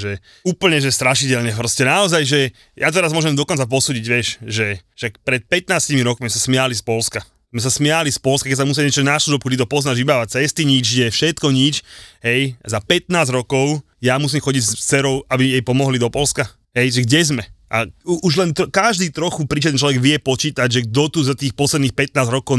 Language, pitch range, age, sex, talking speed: Slovak, 115-145 Hz, 30-49, male, 205 wpm